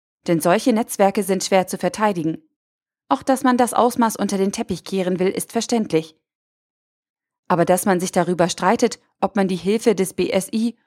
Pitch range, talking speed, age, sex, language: 185-230 Hz, 170 wpm, 20-39, female, German